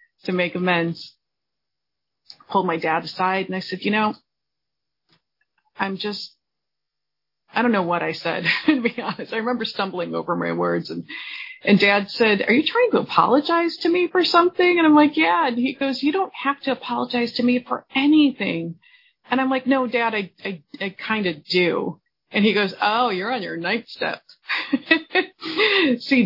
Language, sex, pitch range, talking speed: English, female, 180-250 Hz, 180 wpm